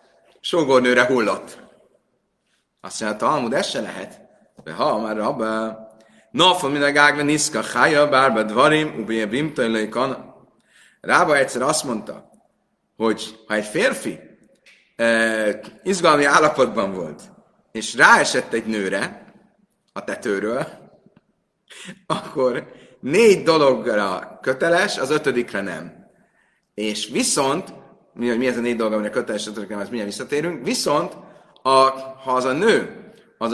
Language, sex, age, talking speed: Hungarian, male, 30-49, 120 wpm